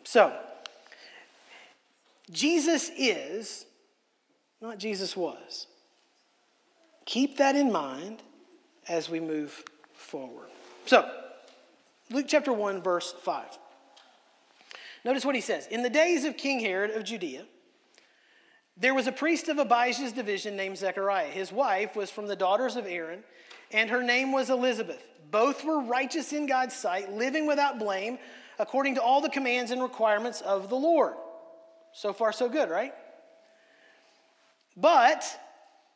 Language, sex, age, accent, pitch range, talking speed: English, male, 40-59, American, 190-275 Hz, 130 wpm